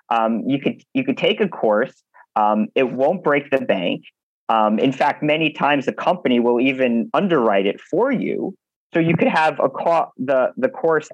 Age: 40-59